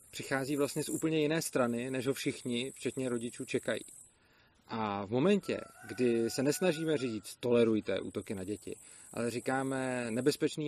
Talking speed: 145 wpm